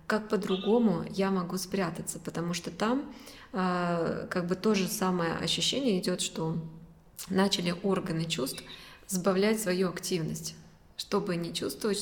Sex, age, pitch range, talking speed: female, 20-39, 180-210 Hz, 130 wpm